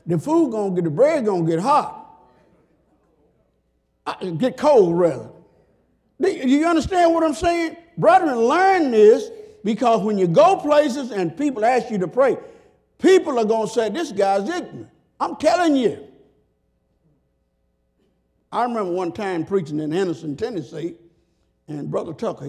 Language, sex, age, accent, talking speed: English, male, 50-69, American, 140 wpm